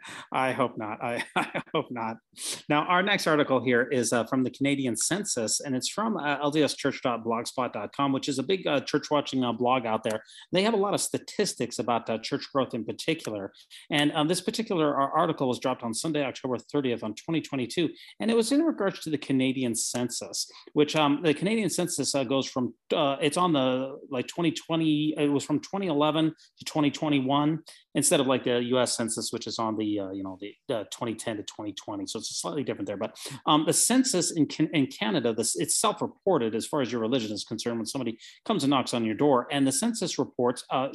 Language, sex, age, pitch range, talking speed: English, male, 30-49, 125-165 Hz, 205 wpm